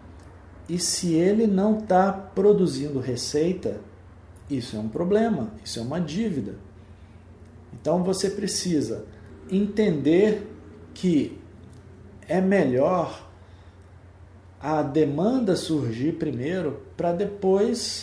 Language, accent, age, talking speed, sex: Portuguese, Brazilian, 50-69, 95 wpm, male